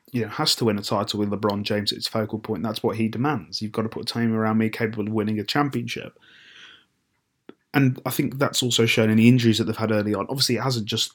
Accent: British